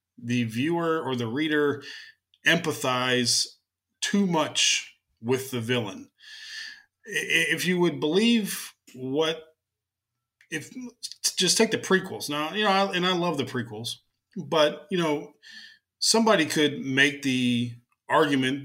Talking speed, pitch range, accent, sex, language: 120 wpm, 125-175 Hz, American, male, English